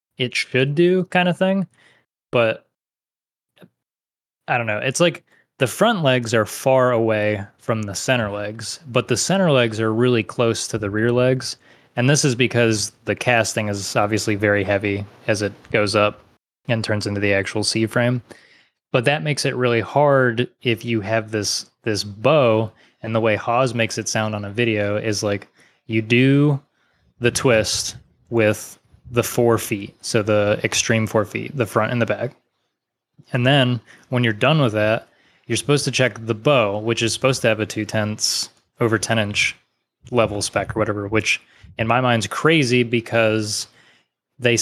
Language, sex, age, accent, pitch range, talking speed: English, male, 20-39, American, 110-125 Hz, 175 wpm